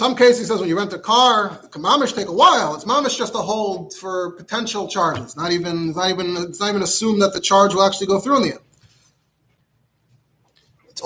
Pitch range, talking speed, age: 185-270 Hz, 220 wpm, 30-49